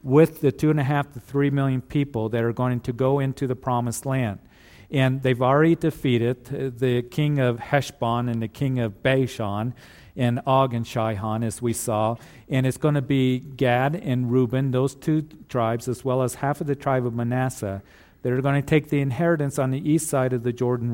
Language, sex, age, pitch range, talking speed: English, male, 50-69, 120-145 Hz, 210 wpm